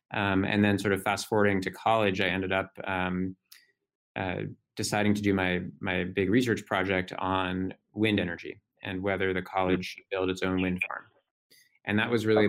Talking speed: 185 wpm